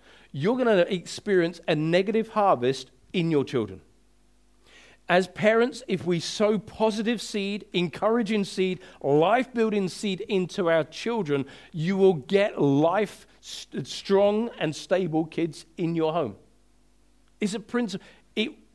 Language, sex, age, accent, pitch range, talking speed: English, male, 50-69, British, 125-190 Hz, 120 wpm